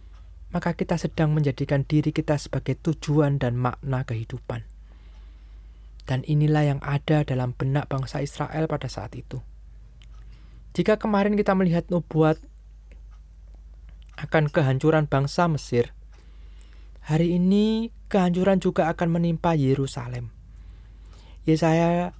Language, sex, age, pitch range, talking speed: Indonesian, male, 20-39, 110-160 Hz, 105 wpm